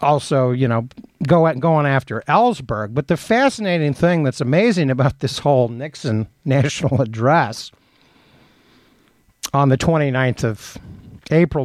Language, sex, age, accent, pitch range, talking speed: English, male, 60-79, American, 130-180 Hz, 125 wpm